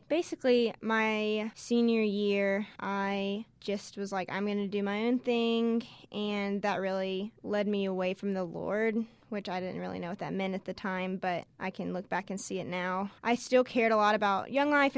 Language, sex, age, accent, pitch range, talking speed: English, female, 10-29, American, 190-220 Hz, 210 wpm